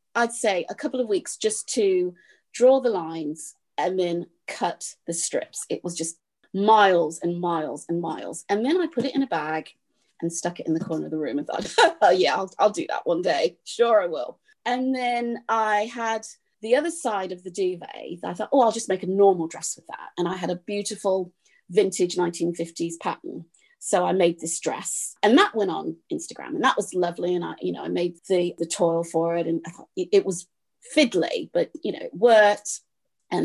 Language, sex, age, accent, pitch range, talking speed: English, female, 30-49, British, 175-255 Hz, 215 wpm